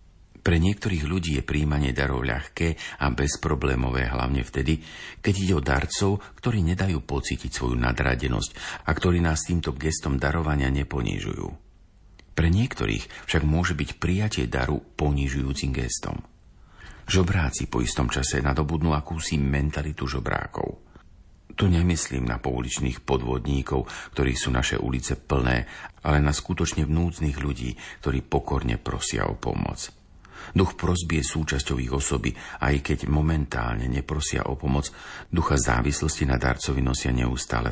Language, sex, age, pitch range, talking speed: Slovak, male, 50-69, 65-85 Hz, 125 wpm